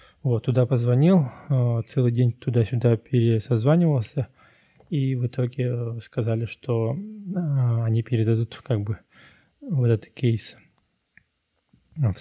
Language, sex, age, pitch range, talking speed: Russian, male, 20-39, 110-130 Hz, 100 wpm